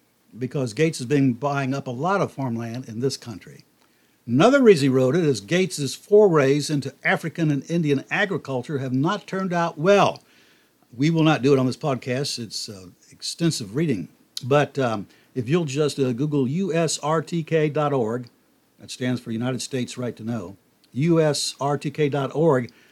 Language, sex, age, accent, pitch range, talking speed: English, male, 60-79, American, 125-160 Hz, 155 wpm